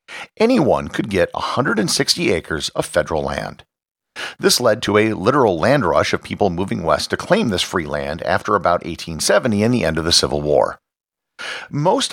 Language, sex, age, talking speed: English, male, 50-69, 175 wpm